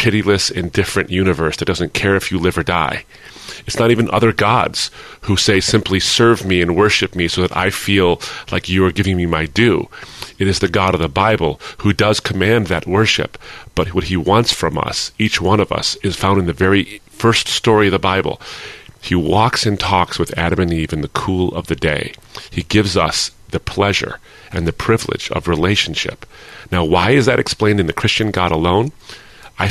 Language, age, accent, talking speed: English, 40-59, American, 205 wpm